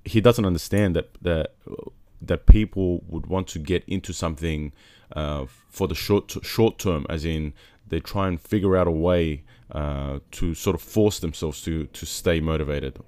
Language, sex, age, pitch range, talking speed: English, male, 20-39, 80-100 Hz, 180 wpm